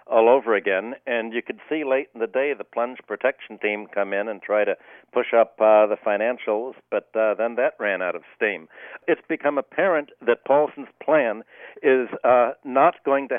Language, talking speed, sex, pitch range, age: English, 195 wpm, male, 115-140 Hz, 60-79